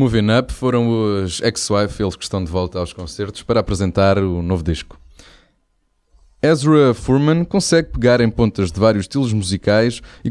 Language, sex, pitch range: Portuguese, male, 95-125 Hz